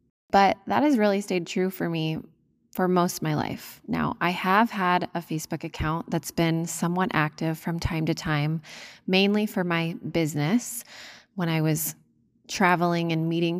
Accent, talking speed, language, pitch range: American, 170 wpm, English, 160-190 Hz